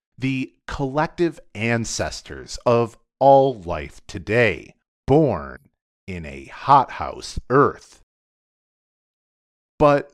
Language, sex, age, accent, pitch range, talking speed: English, male, 40-59, American, 85-130 Hz, 75 wpm